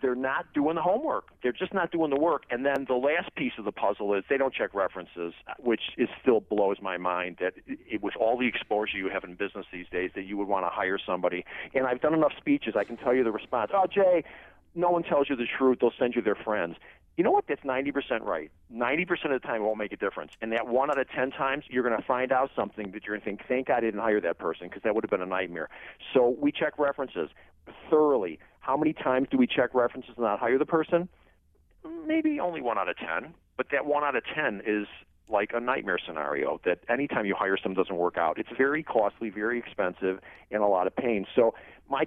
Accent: American